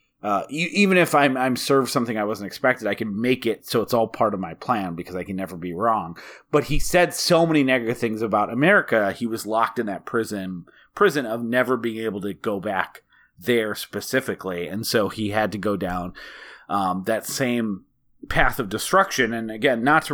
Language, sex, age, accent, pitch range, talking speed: English, male, 30-49, American, 100-130 Hz, 210 wpm